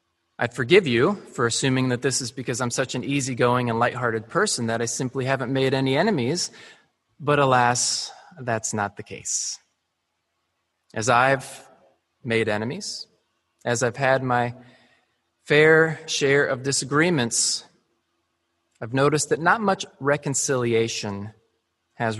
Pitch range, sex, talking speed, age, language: 105-135 Hz, male, 130 wpm, 20-39, English